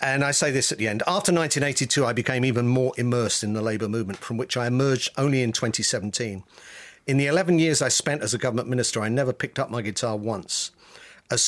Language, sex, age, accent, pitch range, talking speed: English, male, 50-69, British, 110-140 Hz, 225 wpm